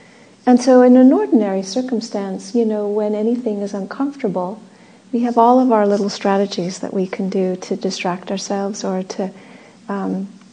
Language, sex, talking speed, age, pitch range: English, female, 165 wpm, 50-69, 200-225 Hz